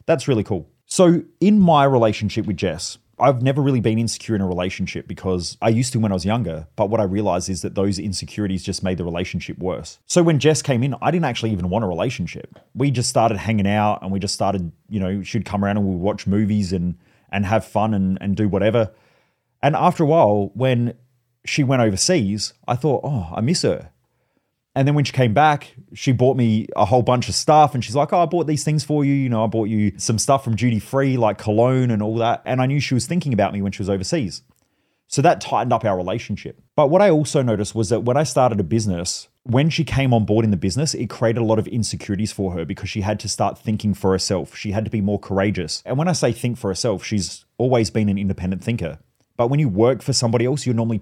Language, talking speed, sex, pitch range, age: English, 250 wpm, male, 100-130 Hz, 30-49